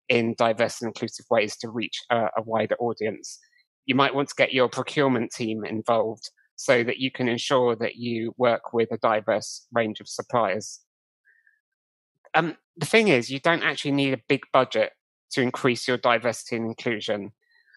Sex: male